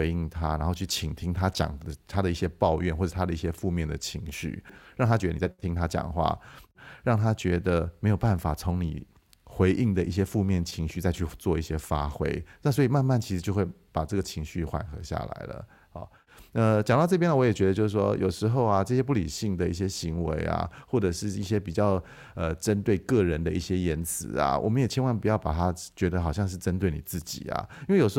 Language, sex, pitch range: Chinese, male, 85-105 Hz